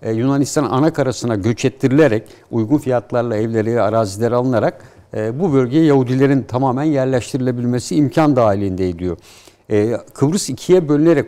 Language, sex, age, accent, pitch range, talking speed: Turkish, male, 60-79, native, 115-150 Hz, 110 wpm